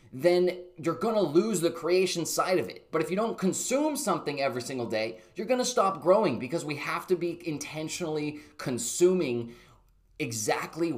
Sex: male